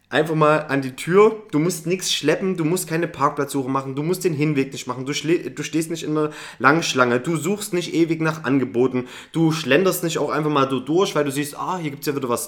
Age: 20-39